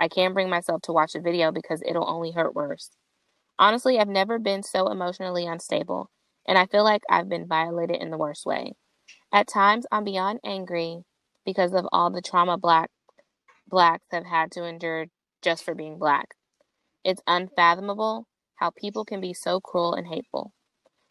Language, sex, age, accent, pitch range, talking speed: English, female, 20-39, American, 170-195 Hz, 175 wpm